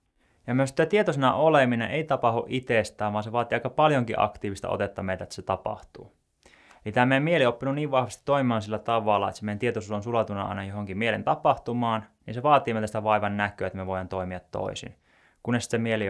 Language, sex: Finnish, male